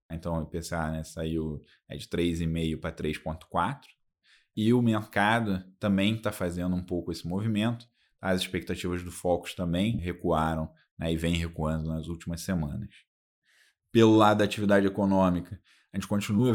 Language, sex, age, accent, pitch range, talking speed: Portuguese, male, 20-39, Brazilian, 85-100 Hz, 150 wpm